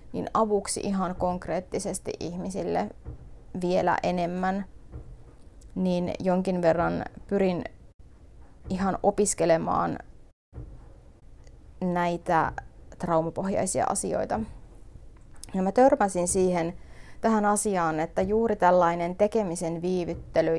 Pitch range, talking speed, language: 165-195 Hz, 80 wpm, Finnish